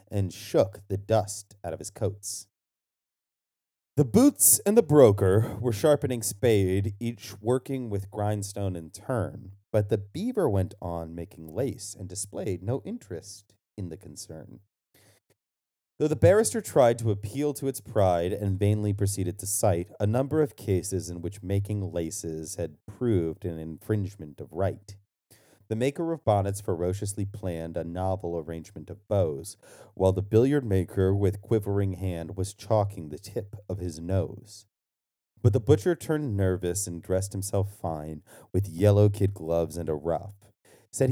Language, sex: English, male